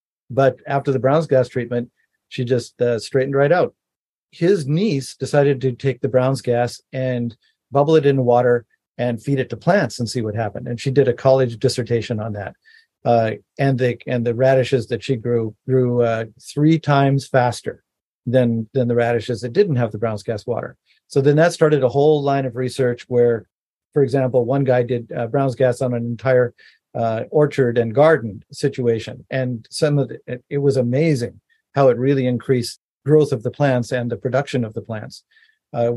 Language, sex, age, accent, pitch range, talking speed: English, male, 50-69, American, 120-140 Hz, 190 wpm